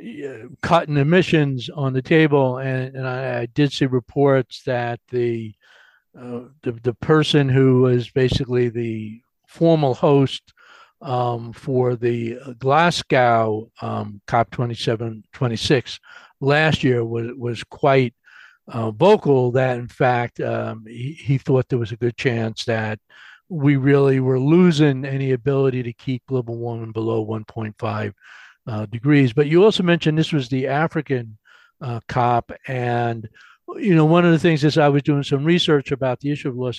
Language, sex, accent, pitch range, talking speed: English, male, American, 120-150 Hz, 150 wpm